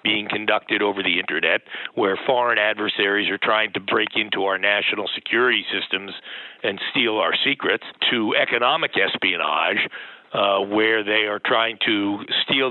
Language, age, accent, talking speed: English, 50-69, American, 145 wpm